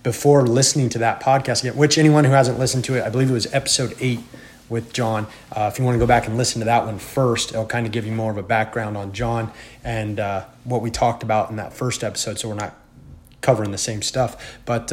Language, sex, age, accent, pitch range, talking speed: English, male, 30-49, American, 110-130 Hz, 255 wpm